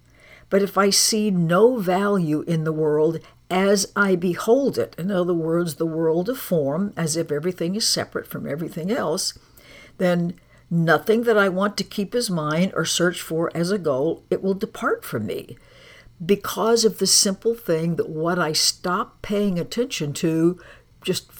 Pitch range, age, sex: 155-190 Hz, 60-79, female